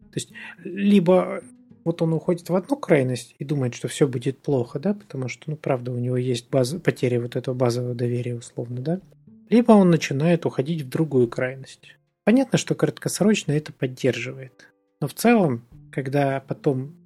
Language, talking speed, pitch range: Russian, 165 wpm, 125-165 Hz